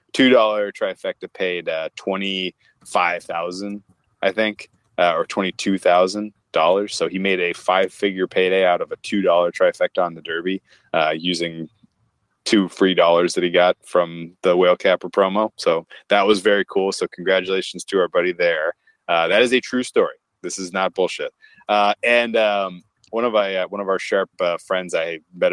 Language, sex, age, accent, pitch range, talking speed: English, male, 20-39, American, 90-115 Hz, 170 wpm